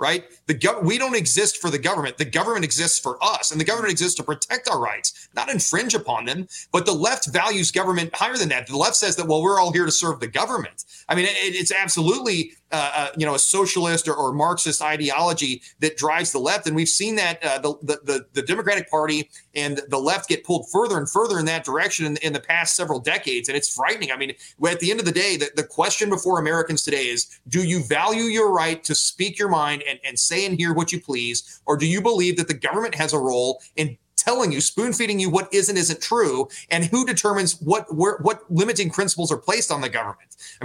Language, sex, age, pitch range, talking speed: English, male, 30-49, 150-195 Hz, 240 wpm